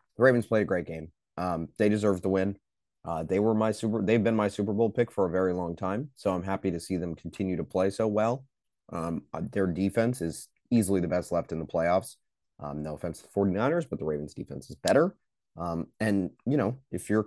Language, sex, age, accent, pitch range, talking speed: English, male, 30-49, American, 85-105 Hz, 235 wpm